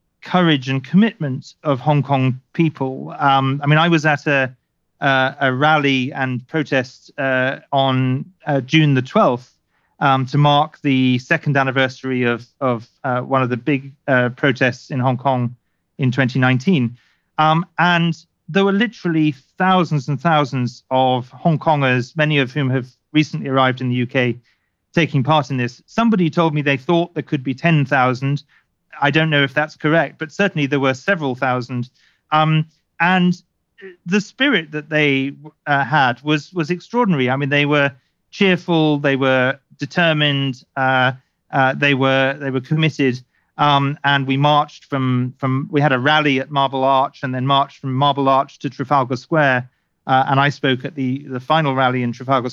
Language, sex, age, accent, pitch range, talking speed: English, male, 40-59, British, 130-155 Hz, 170 wpm